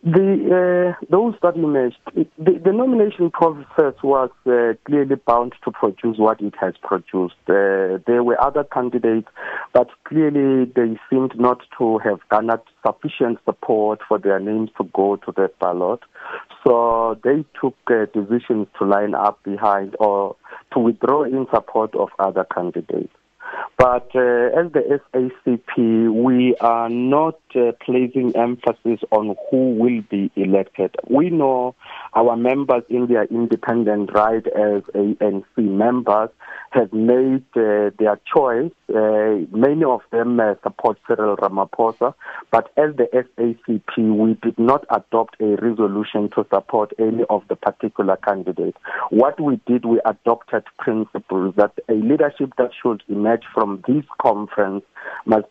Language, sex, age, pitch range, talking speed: English, male, 50-69, 105-130 Hz, 145 wpm